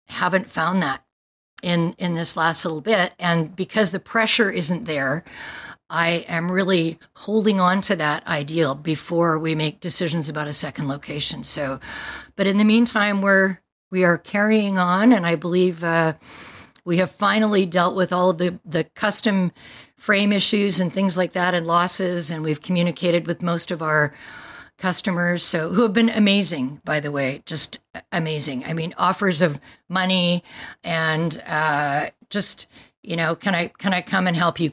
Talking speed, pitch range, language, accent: 170 wpm, 160-195 Hz, English, American